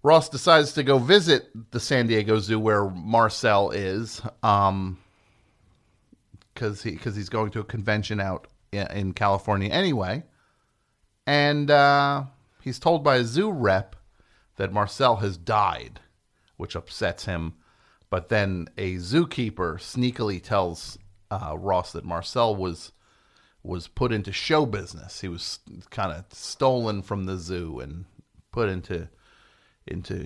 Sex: male